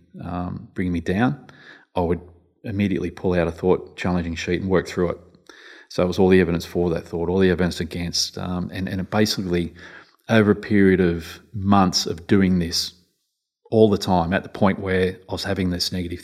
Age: 30-49